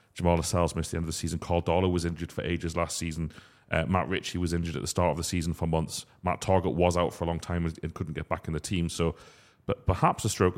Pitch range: 80-95 Hz